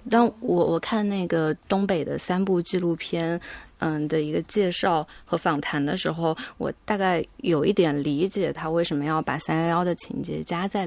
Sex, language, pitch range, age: female, Chinese, 155-180 Hz, 20-39